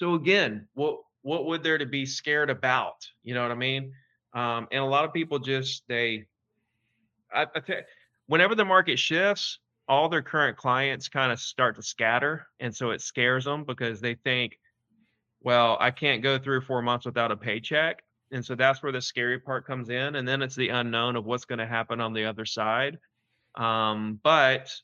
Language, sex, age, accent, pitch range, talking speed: English, male, 30-49, American, 115-135 Hz, 195 wpm